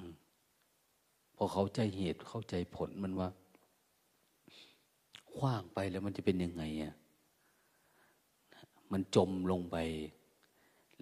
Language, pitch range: Thai, 85-105 Hz